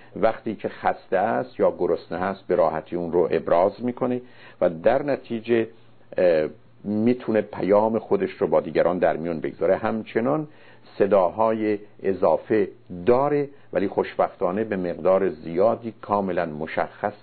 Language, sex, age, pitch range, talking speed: Persian, male, 50-69, 95-125 Hz, 125 wpm